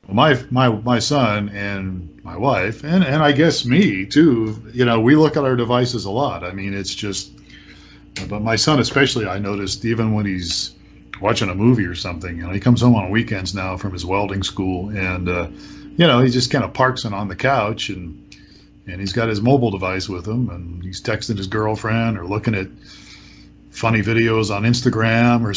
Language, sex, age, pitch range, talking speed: English, male, 40-59, 100-130 Hz, 205 wpm